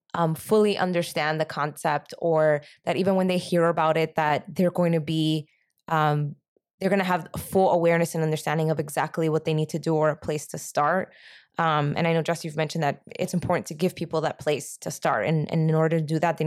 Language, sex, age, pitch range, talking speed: English, female, 20-39, 160-185 Hz, 235 wpm